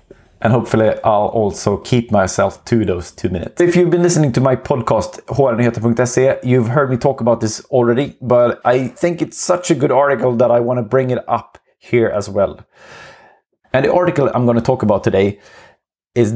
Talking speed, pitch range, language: 185 wpm, 105-125 Hz, English